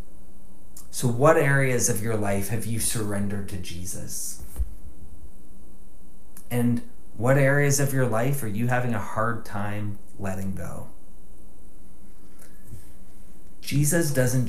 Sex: male